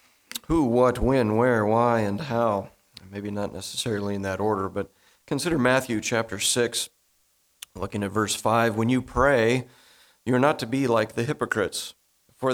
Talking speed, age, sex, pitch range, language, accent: 165 wpm, 40-59, male, 105-125 Hz, English, American